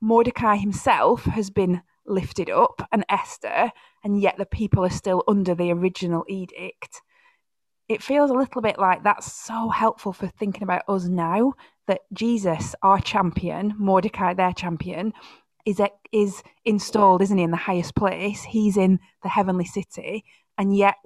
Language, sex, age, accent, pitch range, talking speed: English, female, 20-39, British, 180-215 Hz, 160 wpm